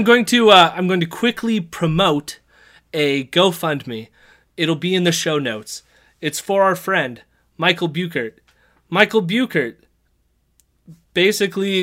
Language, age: English, 30-49